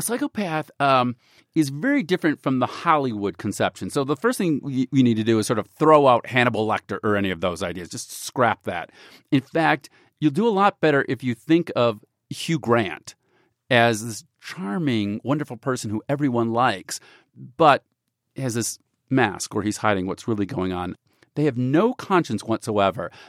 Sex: male